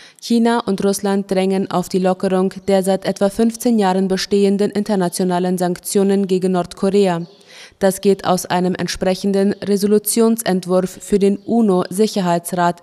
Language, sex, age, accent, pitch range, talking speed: German, female, 20-39, German, 180-200 Hz, 120 wpm